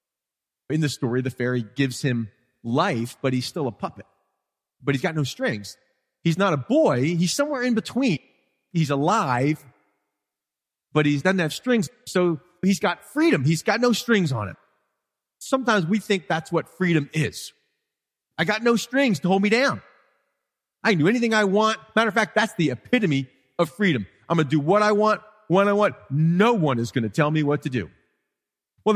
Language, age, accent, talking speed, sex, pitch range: English, 30-49, American, 190 wpm, male, 125-175 Hz